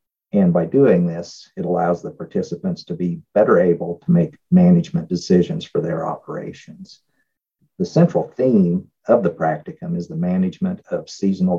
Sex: male